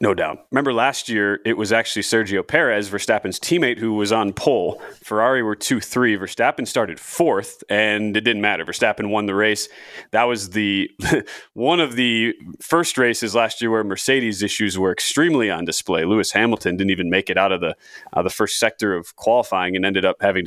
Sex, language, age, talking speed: male, English, 30-49, 195 wpm